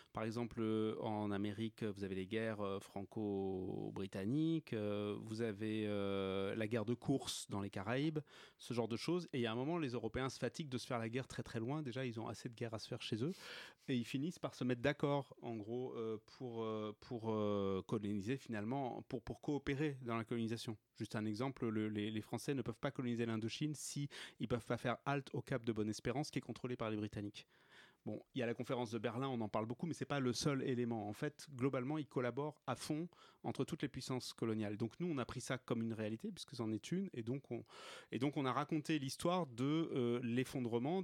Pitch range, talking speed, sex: 110-140 Hz, 225 wpm, male